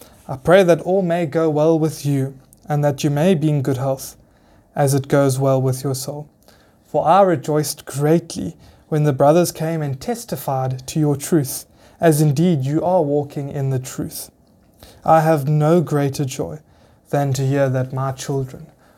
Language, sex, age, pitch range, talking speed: English, male, 20-39, 135-170 Hz, 175 wpm